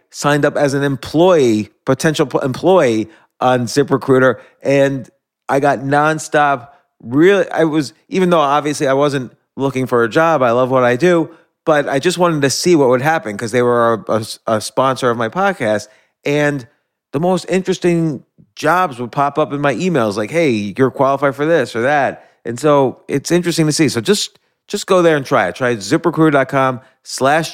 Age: 30-49